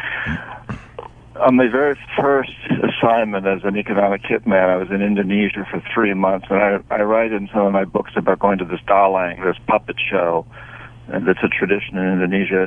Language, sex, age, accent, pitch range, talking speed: English, male, 60-79, American, 95-110 Hz, 180 wpm